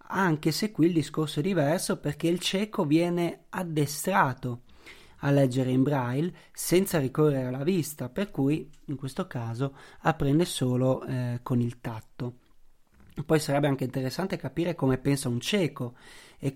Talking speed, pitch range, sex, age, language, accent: 150 wpm, 130-165 Hz, male, 30-49, Italian, native